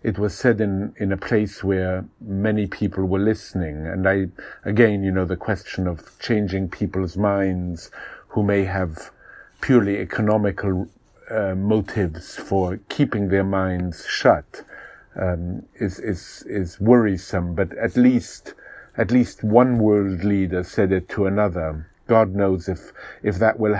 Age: 50-69